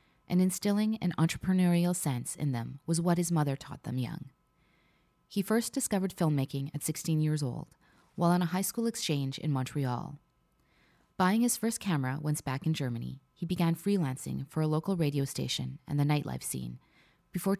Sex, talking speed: female, 175 wpm